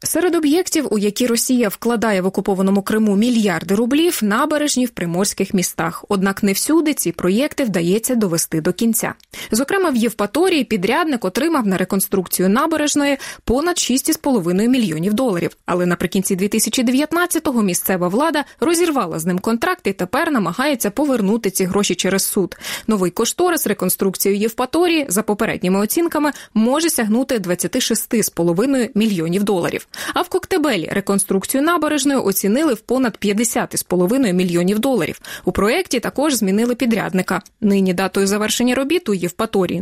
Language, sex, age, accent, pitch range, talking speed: Russian, female, 20-39, native, 195-270 Hz, 135 wpm